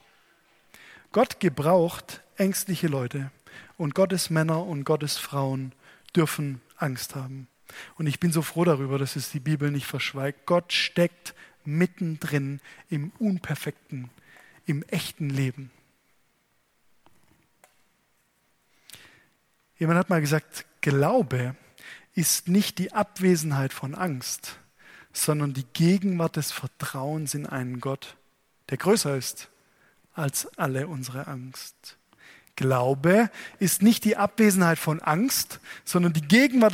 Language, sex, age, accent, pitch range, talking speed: German, male, 20-39, German, 140-180 Hz, 115 wpm